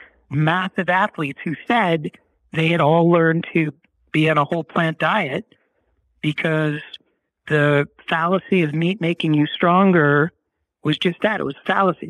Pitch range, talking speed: 140-170 Hz, 150 wpm